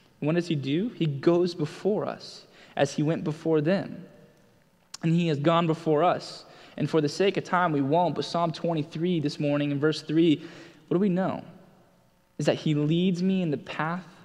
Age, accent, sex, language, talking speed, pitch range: 20-39, American, male, English, 200 wpm, 140-165 Hz